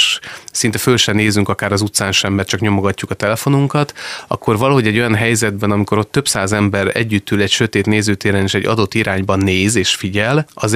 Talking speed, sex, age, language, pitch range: 195 wpm, male, 30-49, Hungarian, 100-115 Hz